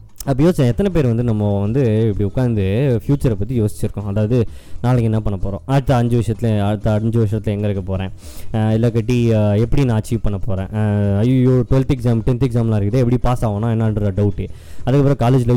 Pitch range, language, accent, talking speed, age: 110-145 Hz, Tamil, native, 175 wpm, 20-39